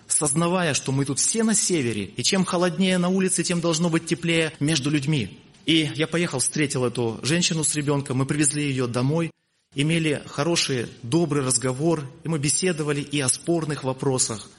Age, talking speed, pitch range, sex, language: 30-49, 170 wpm, 130-170 Hz, male, Russian